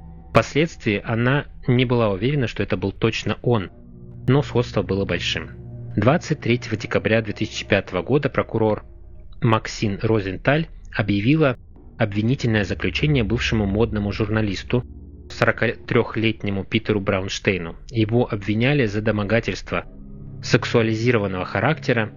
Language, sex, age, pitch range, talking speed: Russian, male, 20-39, 95-125 Hz, 95 wpm